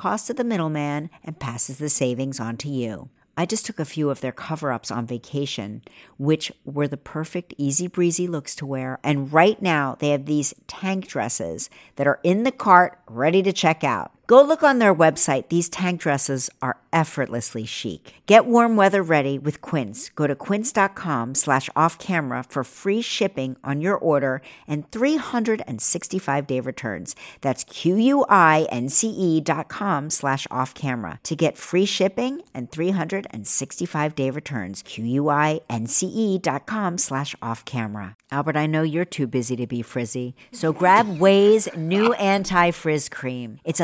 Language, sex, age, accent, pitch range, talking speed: English, female, 50-69, American, 135-180 Hz, 155 wpm